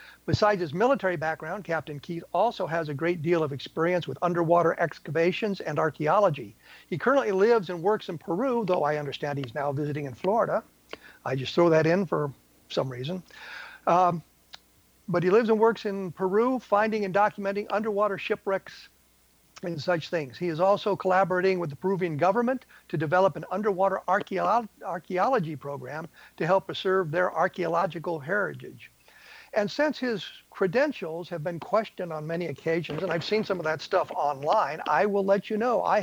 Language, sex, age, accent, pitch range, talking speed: English, male, 50-69, American, 155-195 Hz, 170 wpm